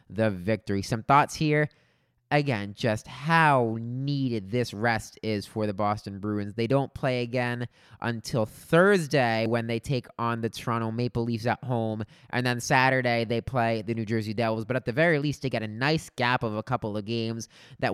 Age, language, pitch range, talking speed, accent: 20-39, English, 115-140 Hz, 190 wpm, American